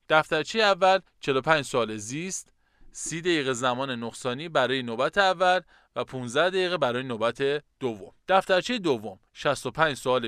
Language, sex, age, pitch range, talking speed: Persian, male, 20-39, 120-180 Hz, 135 wpm